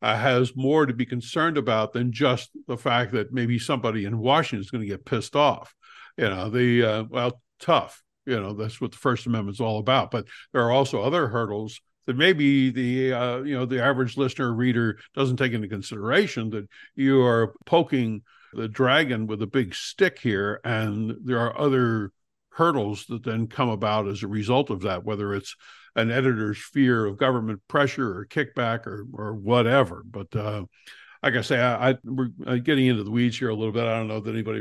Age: 60-79